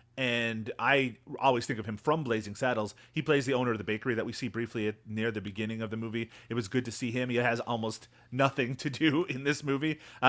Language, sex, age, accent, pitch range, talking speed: English, male, 30-49, American, 115-145 Hz, 240 wpm